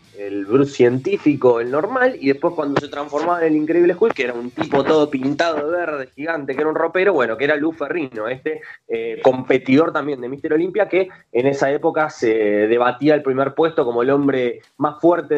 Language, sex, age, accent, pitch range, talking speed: Spanish, male, 20-39, Argentinian, 140-190 Hz, 205 wpm